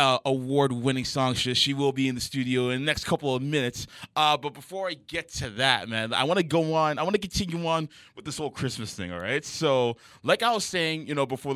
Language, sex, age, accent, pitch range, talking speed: English, male, 20-39, American, 115-150 Hz, 250 wpm